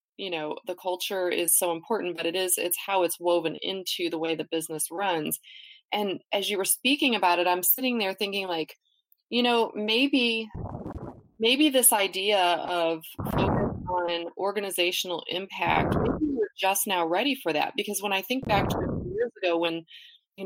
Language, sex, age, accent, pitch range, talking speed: English, female, 30-49, American, 170-215 Hz, 180 wpm